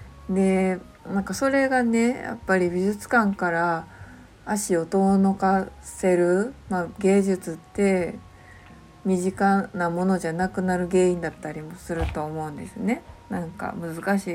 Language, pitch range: Japanese, 160-200 Hz